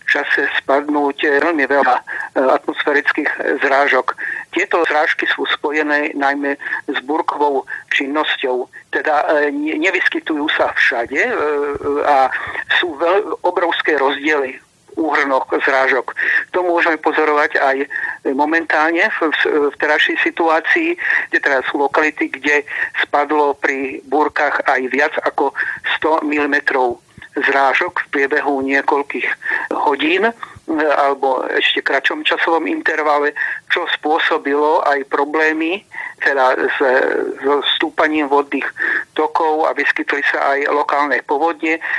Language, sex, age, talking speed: Slovak, male, 50-69, 100 wpm